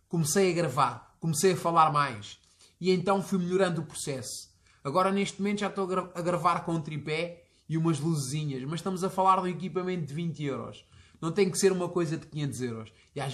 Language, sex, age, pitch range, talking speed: Portuguese, male, 20-39, 140-180 Hz, 210 wpm